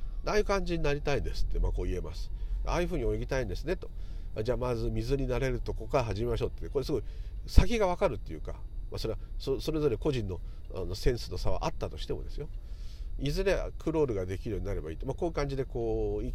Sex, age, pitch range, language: male, 50-69, 90-140 Hz, Japanese